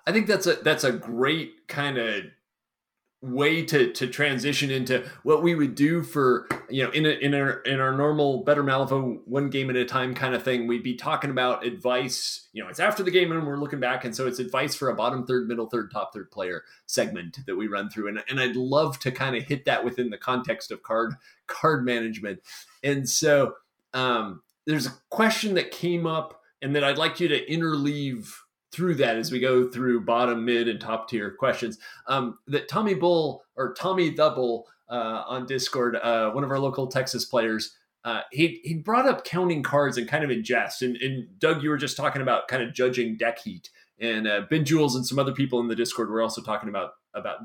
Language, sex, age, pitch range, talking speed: English, male, 30-49, 125-160 Hz, 220 wpm